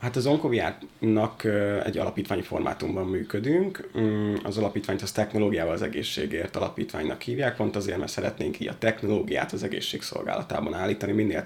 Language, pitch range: Hungarian, 100-115 Hz